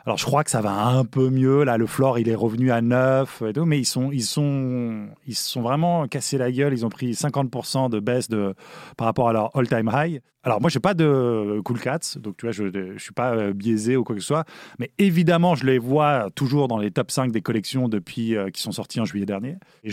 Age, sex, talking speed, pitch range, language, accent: 20-39, male, 260 wpm, 115-150 Hz, English, French